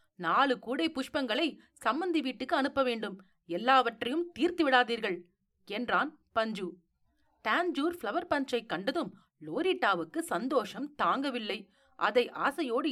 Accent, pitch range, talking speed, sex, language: native, 220-315 Hz, 100 wpm, female, Tamil